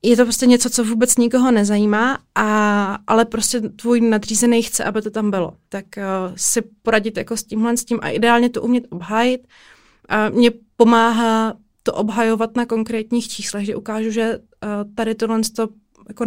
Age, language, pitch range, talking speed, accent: 20-39, Czech, 215-235 Hz, 175 wpm, native